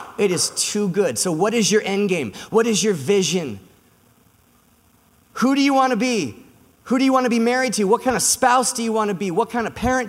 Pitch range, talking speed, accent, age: 200-245 Hz, 245 wpm, American, 30-49